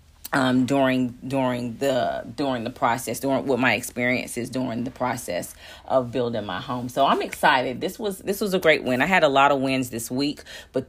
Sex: female